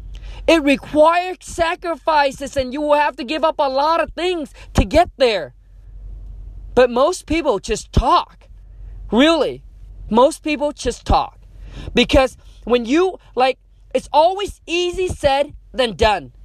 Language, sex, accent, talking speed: English, male, American, 135 wpm